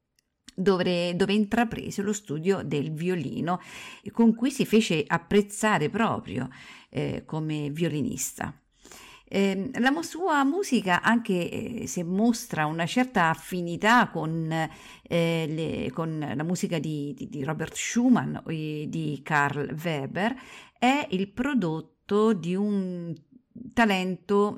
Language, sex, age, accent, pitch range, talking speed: Italian, female, 50-69, native, 170-230 Hz, 110 wpm